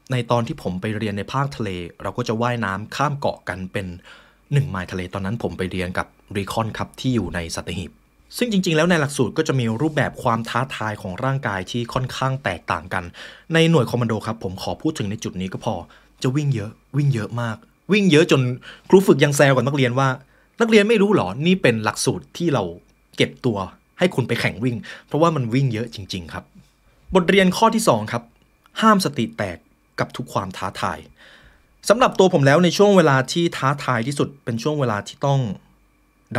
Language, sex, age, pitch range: Thai, male, 20-39, 110-150 Hz